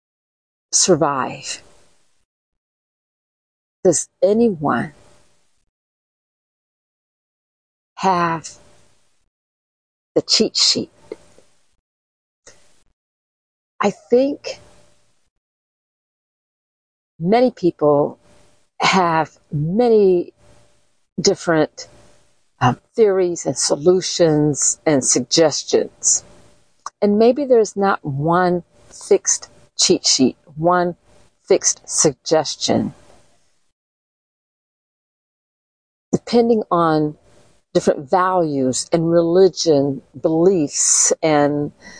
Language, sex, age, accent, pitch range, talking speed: English, female, 50-69, American, 140-195 Hz, 55 wpm